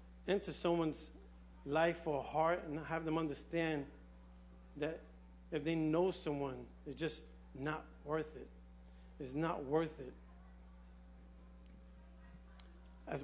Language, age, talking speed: English, 40-59, 110 wpm